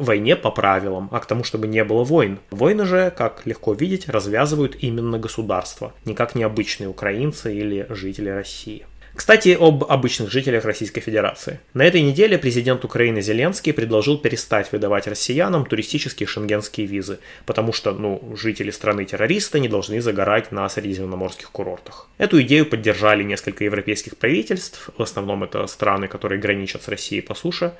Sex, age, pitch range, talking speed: male, 20-39, 105-130 Hz, 155 wpm